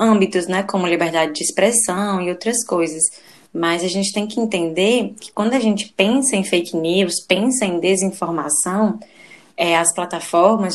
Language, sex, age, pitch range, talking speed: Portuguese, female, 20-39, 175-225 Hz, 155 wpm